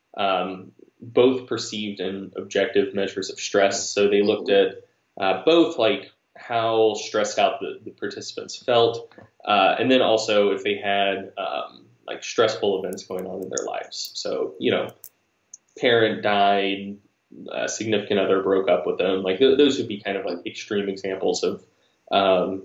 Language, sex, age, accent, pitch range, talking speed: English, male, 20-39, American, 100-115 Hz, 160 wpm